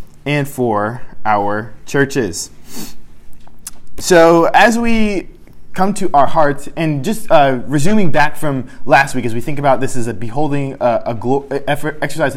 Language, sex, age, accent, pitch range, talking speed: English, male, 20-39, American, 125-170 Hz, 130 wpm